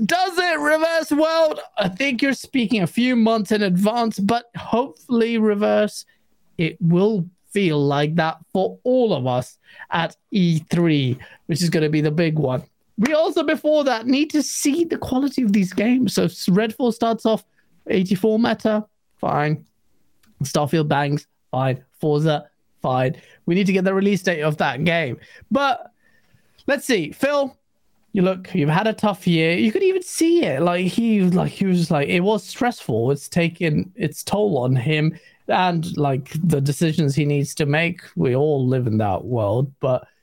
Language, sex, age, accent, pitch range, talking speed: English, male, 30-49, British, 155-235 Hz, 175 wpm